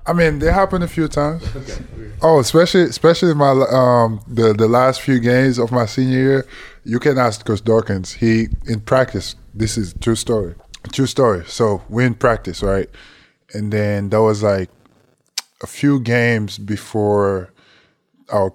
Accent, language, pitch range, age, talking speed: American, English, 95-120 Hz, 20-39, 170 wpm